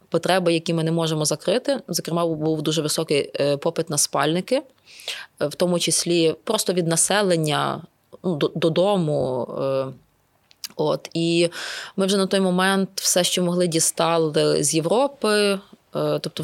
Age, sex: 20-39, female